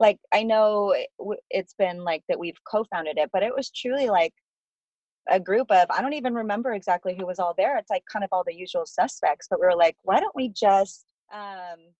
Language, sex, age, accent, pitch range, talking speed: English, female, 30-49, American, 155-215 Hz, 220 wpm